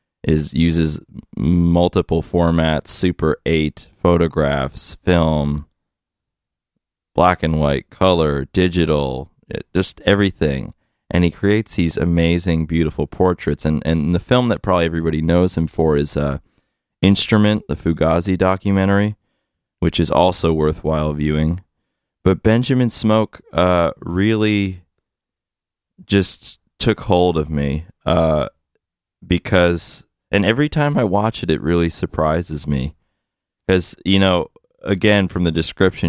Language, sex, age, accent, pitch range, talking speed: English, male, 20-39, American, 75-95 Hz, 120 wpm